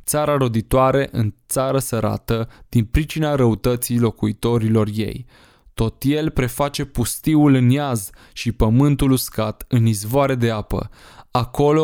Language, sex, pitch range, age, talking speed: Romanian, male, 115-135 Hz, 20-39, 120 wpm